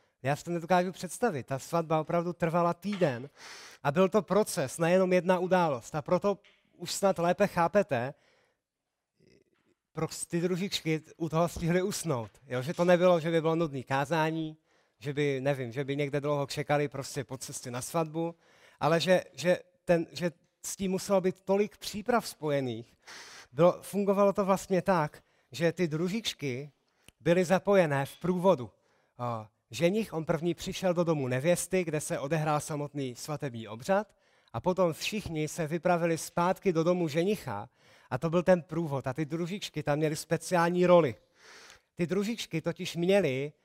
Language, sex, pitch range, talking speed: Czech, male, 145-180 Hz, 145 wpm